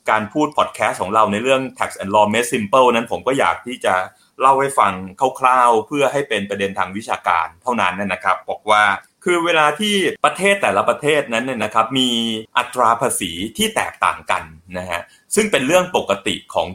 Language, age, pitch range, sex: Thai, 20-39, 100-140 Hz, male